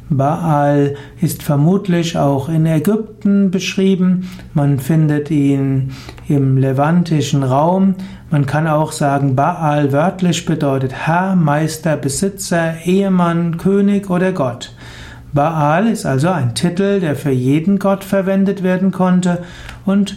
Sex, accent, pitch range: male, German, 140-180 Hz